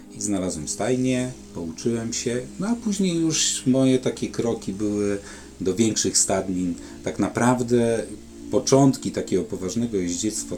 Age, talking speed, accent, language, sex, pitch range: 40-59, 120 wpm, native, Polish, male, 85-105 Hz